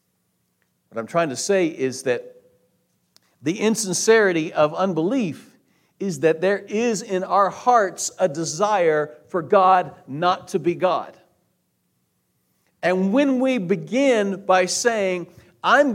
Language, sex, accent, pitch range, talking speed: English, male, American, 145-200 Hz, 125 wpm